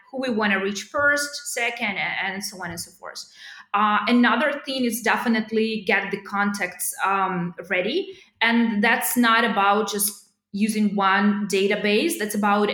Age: 20-39